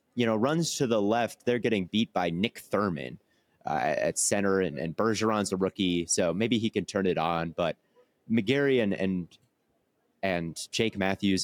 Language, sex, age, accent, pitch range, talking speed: English, male, 30-49, American, 85-115 Hz, 180 wpm